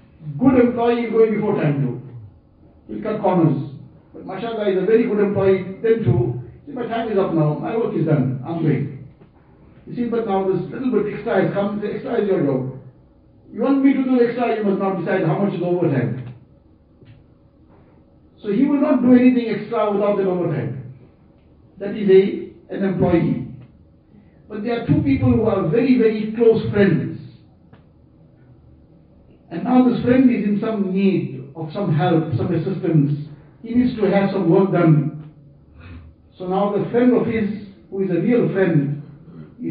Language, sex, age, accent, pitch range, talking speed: English, male, 60-79, Indian, 150-215 Hz, 180 wpm